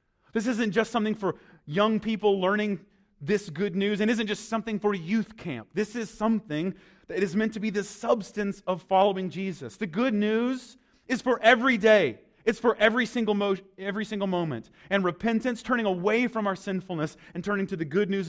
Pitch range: 160-215 Hz